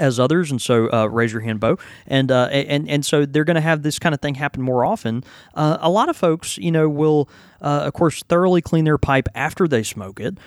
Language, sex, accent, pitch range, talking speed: English, male, American, 110-145 Hz, 250 wpm